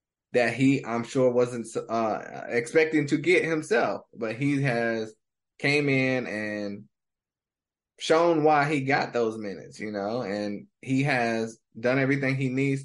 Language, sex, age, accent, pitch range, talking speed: English, male, 20-39, American, 115-140 Hz, 145 wpm